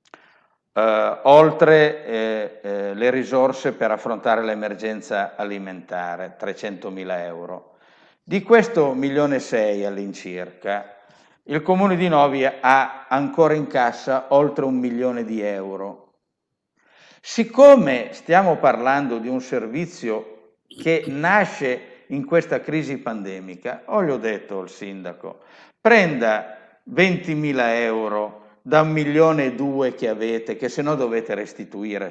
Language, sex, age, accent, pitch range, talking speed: Italian, male, 50-69, native, 105-155 Hz, 120 wpm